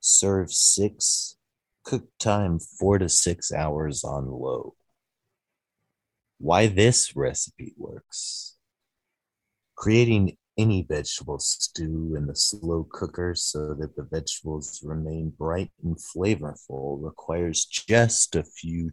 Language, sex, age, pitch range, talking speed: English, male, 30-49, 80-100 Hz, 110 wpm